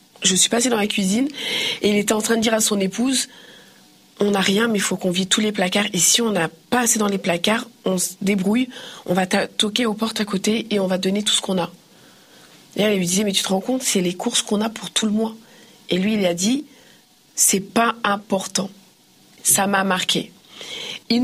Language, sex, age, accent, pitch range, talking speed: French, female, 40-59, French, 195-235 Hz, 255 wpm